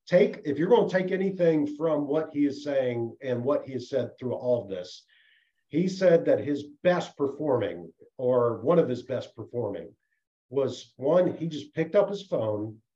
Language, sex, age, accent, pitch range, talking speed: English, male, 50-69, American, 120-155 Hz, 190 wpm